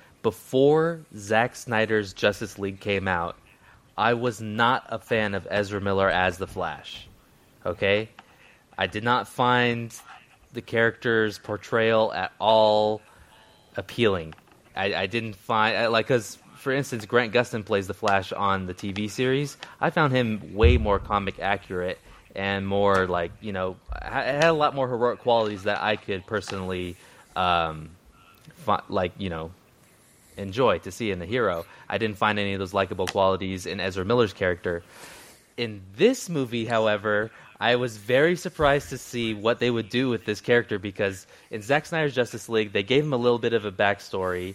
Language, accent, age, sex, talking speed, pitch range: English, American, 20-39, male, 170 wpm, 95-120 Hz